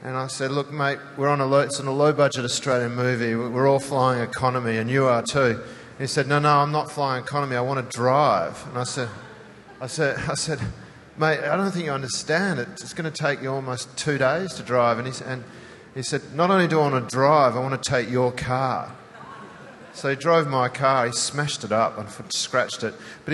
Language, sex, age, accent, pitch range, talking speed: English, male, 40-59, Australian, 125-150 Hz, 225 wpm